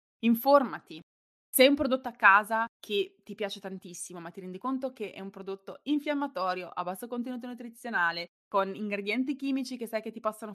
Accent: native